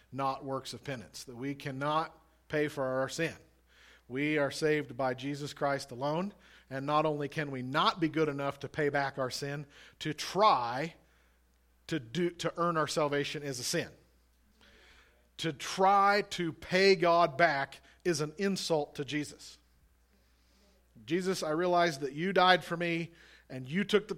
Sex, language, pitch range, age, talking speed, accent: male, English, 135-170 Hz, 40-59, 165 wpm, American